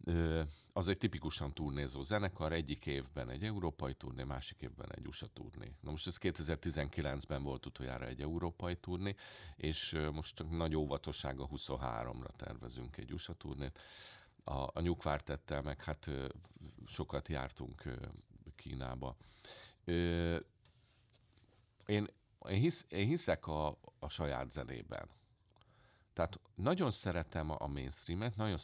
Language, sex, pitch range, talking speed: Hungarian, male, 70-85 Hz, 125 wpm